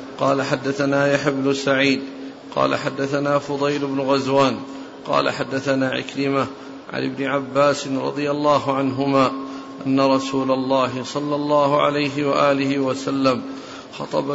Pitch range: 135-150 Hz